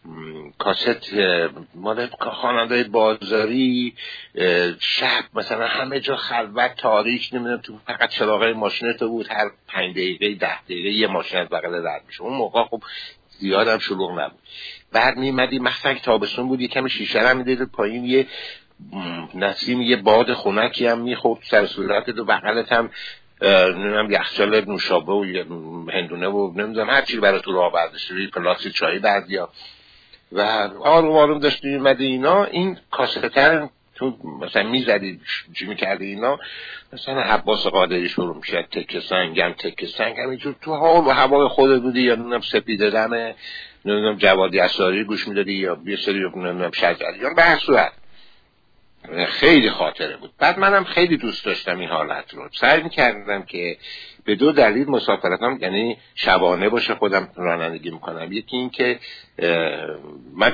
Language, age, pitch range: Persian, 60-79, 95-130 Hz